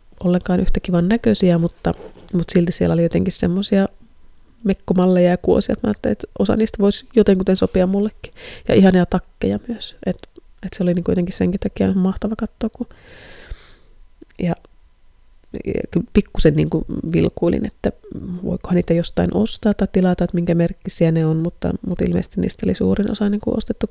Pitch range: 175-210 Hz